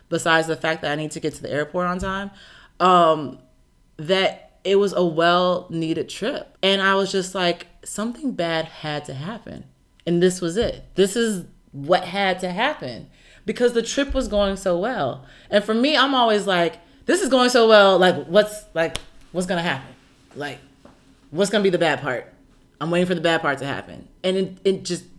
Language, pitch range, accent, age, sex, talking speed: English, 145-190 Hz, American, 30-49, female, 200 wpm